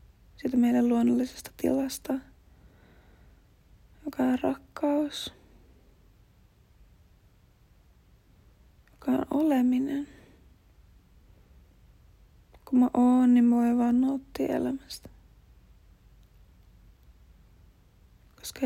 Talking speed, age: 60 wpm, 30-49